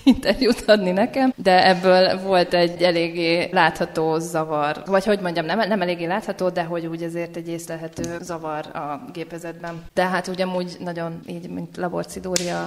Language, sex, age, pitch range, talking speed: Hungarian, female, 20-39, 170-185 Hz, 155 wpm